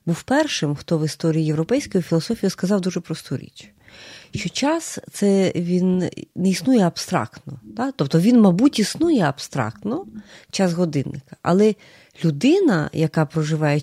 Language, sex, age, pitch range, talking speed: Ukrainian, female, 30-49, 155-225 Hz, 130 wpm